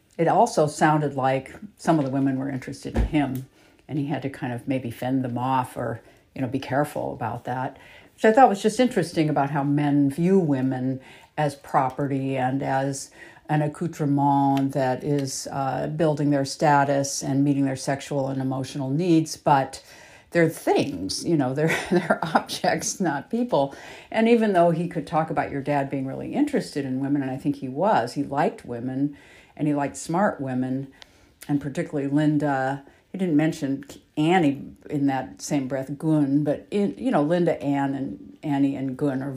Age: 60-79